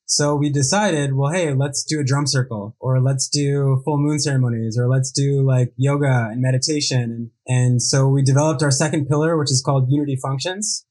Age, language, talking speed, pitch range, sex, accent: 20-39, English, 195 wpm, 130-145 Hz, male, American